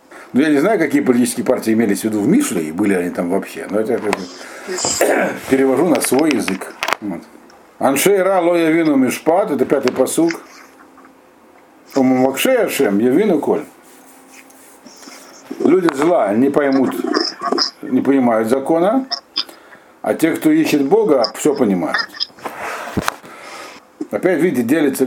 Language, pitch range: Russian, 125-195 Hz